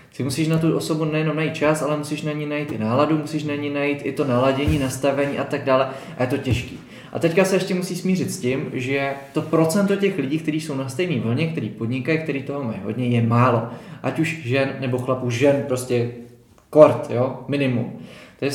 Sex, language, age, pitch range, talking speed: male, Czech, 20-39, 130-155 Hz, 215 wpm